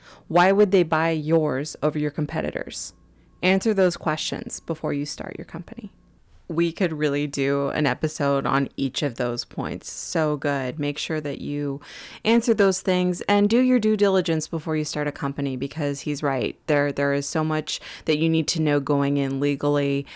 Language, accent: English, American